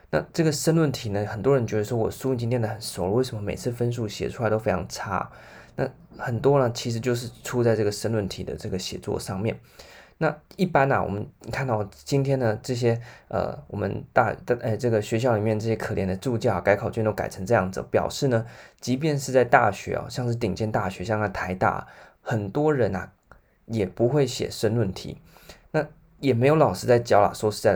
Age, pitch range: 20-39, 105-130 Hz